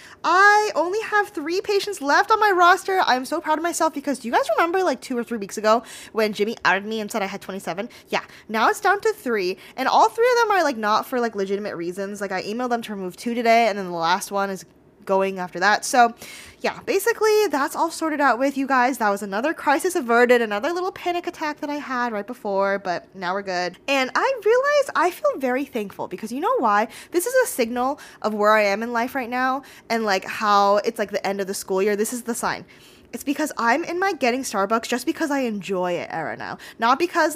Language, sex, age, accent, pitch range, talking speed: English, female, 10-29, American, 205-305 Hz, 245 wpm